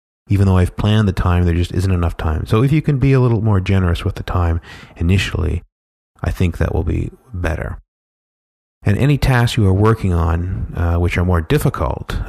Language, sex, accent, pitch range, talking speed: English, male, American, 85-110 Hz, 205 wpm